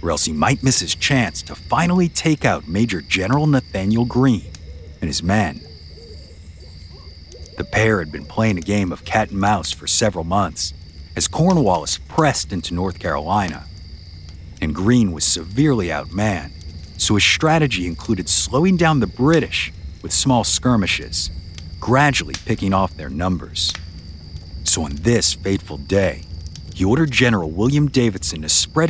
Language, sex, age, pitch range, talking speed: English, male, 50-69, 80-115 Hz, 145 wpm